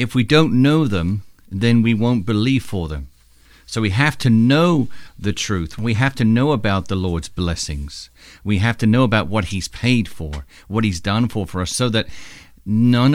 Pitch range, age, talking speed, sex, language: 100-130 Hz, 50-69, 200 wpm, male, English